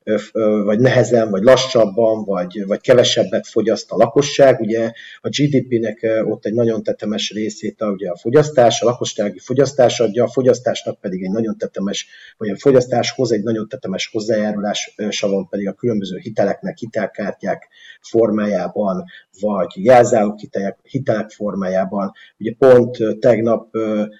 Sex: male